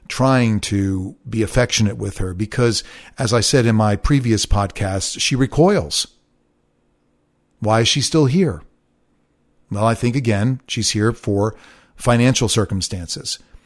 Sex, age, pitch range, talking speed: male, 40-59, 100-130 Hz, 130 wpm